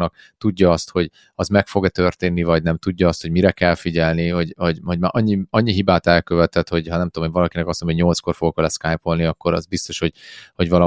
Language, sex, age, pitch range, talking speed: Hungarian, male, 30-49, 85-95 Hz, 220 wpm